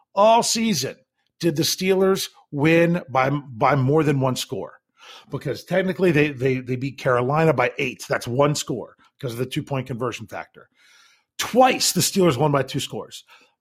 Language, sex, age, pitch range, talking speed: English, male, 40-59, 135-190 Hz, 165 wpm